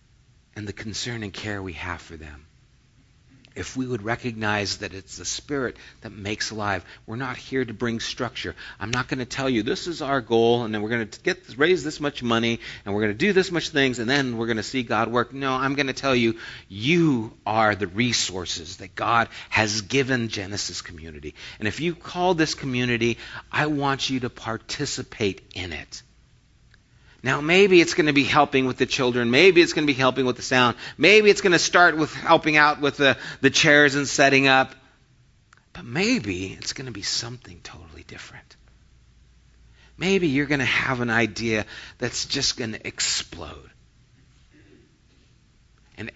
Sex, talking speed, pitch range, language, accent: male, 190 wpm, 105-140 Hz, English, American